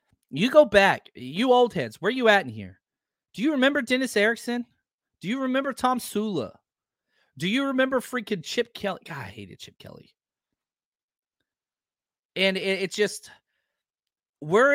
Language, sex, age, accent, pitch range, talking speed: English, male, 30-49, American, 150-225 Hz, 145 wpm